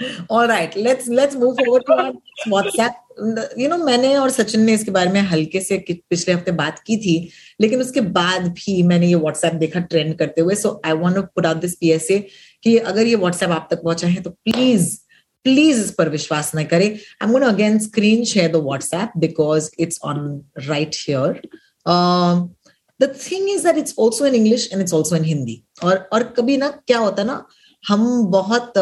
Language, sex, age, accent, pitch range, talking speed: Hindi, female, 30-49, native, 165-225 Hz, 125 wpm